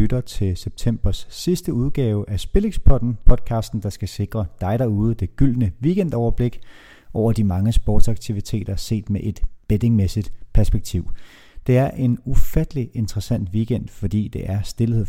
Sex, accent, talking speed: male, native, 135 wpm